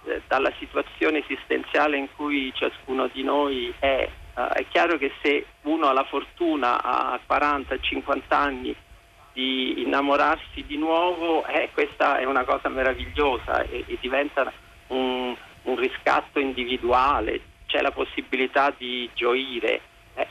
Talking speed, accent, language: 130 wpm, native, Italian